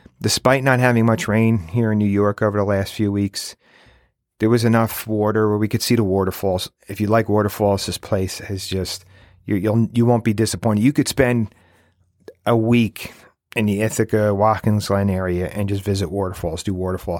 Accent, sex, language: American, male, English